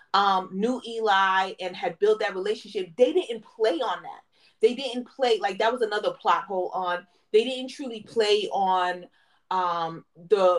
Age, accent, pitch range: 30-49, American, 190-260 Hz